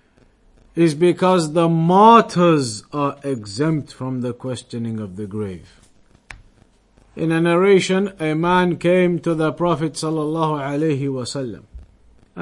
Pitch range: 125-170 Hz